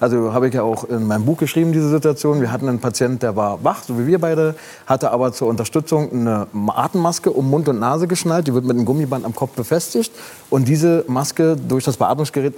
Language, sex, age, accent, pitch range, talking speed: German, male, 30-49, German, 125-155 Hz, 225 wpm